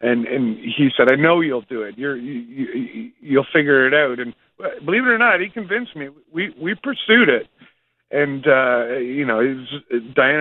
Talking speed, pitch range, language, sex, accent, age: 200 wpm, 130-170 Hz, English, male, American, 50-69